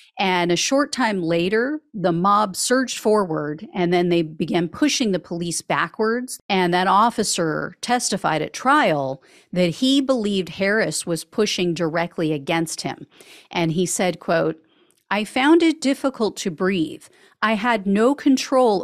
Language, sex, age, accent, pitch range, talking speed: English, female, 40-59, American, 175-245 Hz, 145 wpm